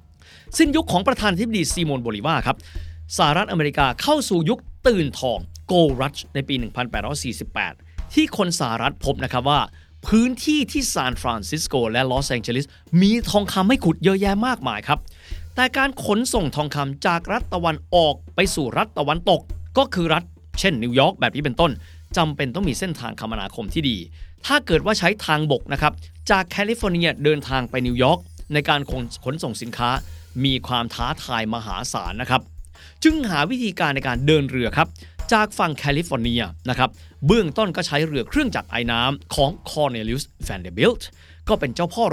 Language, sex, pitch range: Thai, male, 115-190 Hz